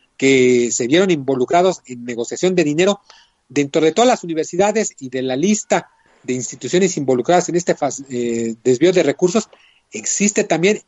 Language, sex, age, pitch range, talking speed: Spanish, male, 40-59, 130-180 Hz, 150 wpm